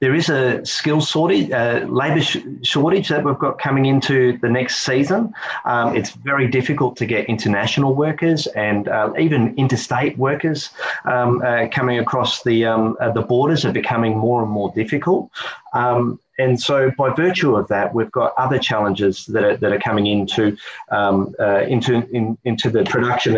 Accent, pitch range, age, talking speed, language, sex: Australian, 110-135 Hz, 30-49, 175 wpm, English, male